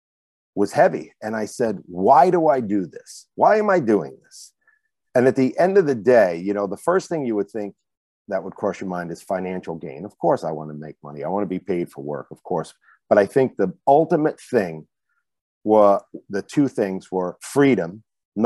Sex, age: male, 50-69